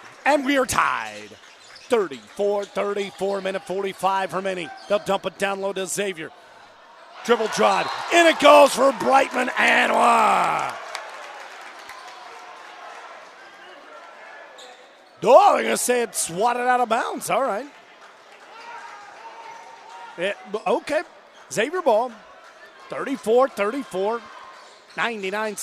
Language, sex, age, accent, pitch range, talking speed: English, male, 40-59, American, 185-240 Hz, 105 wpm